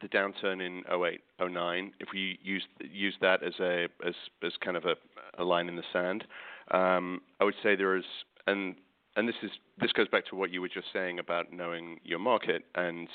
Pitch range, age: 85-95 Hz, 40-59